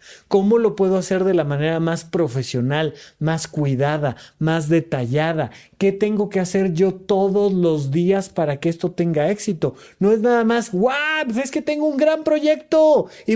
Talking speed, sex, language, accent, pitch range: 170 wpm, male, Spanish, Mexican, 145-210 Hz